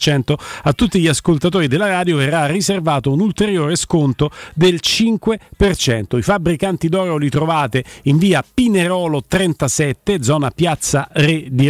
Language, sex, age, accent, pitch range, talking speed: Italian, male, 40-59, native, 150-215 Hz, 135 wpm